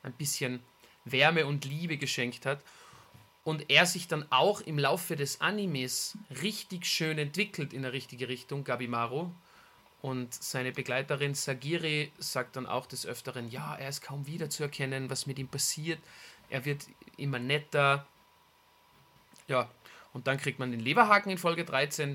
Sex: male